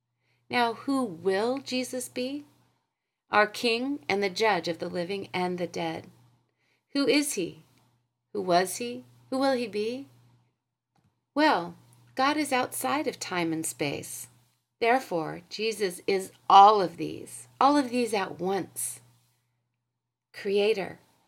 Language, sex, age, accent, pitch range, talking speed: English, female, 40-59, American, 125-210 Hz, 130 wpm